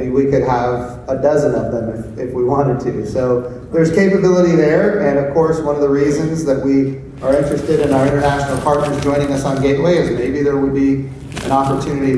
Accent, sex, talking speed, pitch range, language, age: American, male, 205 wpm, 135-160 Hz, English, 30-49